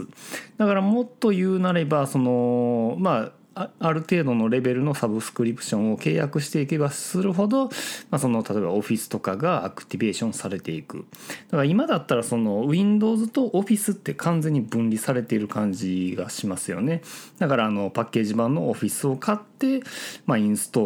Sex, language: male, Japanese